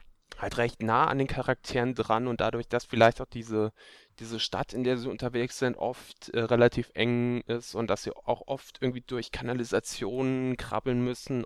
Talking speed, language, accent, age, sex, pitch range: 185 wpm, German, German, 10-29, male, 110-130 Hz